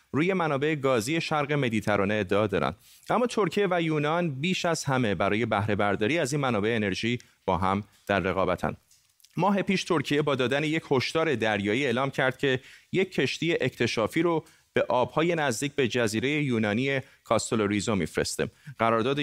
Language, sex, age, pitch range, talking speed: Persian, male, 30-49, 110-150 Hz, 155 wpm